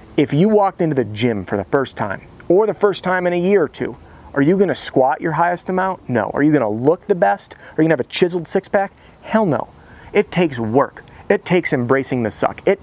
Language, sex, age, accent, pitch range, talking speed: English, male, 40-59, American, 135-190 Hz, 245 wpm